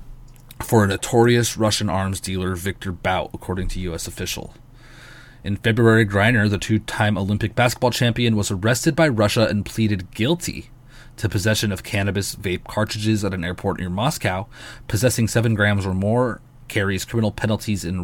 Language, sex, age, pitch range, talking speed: English, male, 20-39, 100-125 Hz, 155 wpm